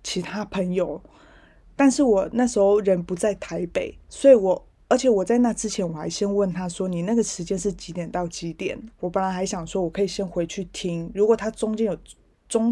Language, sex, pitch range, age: Chinese, female, 180-220 Hz, 20-39